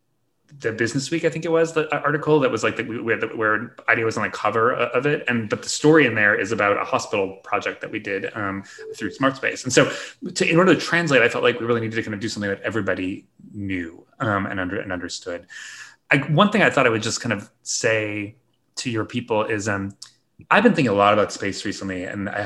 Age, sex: 20-39, male